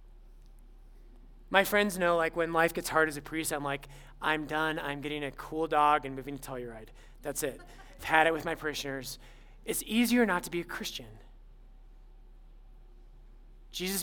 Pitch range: 125-195 Hz